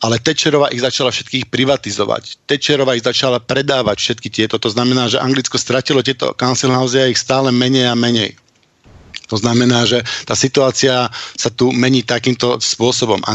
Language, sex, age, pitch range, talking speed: Slovak, male, 50-69, 120-135 Hz, 160 wpm